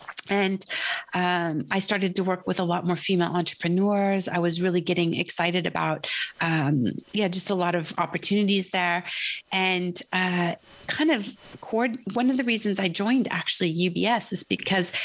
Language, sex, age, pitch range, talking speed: English, female, 30-49, 170-200 Hz, 165 wpm